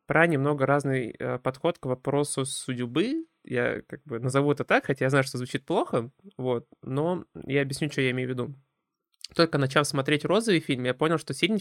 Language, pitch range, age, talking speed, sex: Russian, 125-155 Hz, 20-39, 190 wpm, male